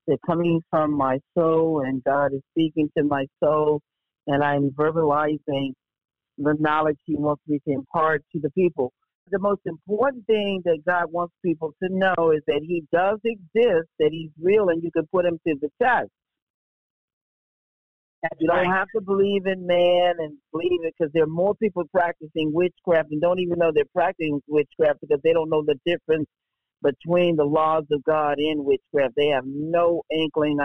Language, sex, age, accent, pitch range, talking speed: English, male, 50-69, American, 150-180 Hz, 180 wpm